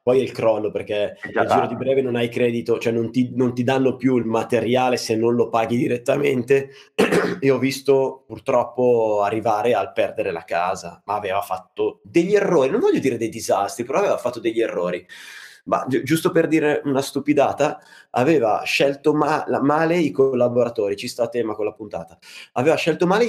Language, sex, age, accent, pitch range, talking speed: Italian, male, 20-39, native, 120-190 Hz, 185 wpm